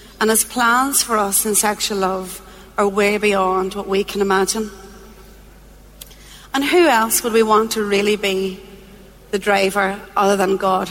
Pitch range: 190-230 Hz